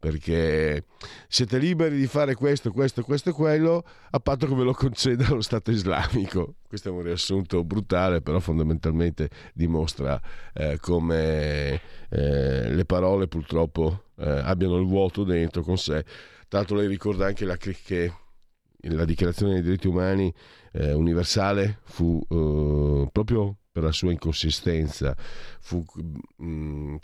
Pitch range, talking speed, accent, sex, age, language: 80-105 Hz, 140 wpm, native, male, 50-69, Italian